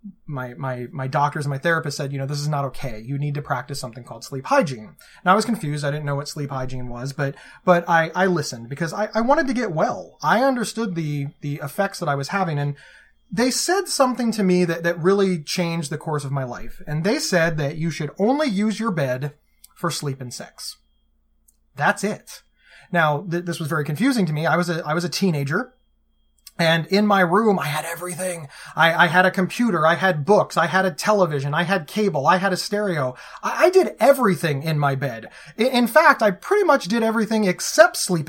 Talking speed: 225 wpm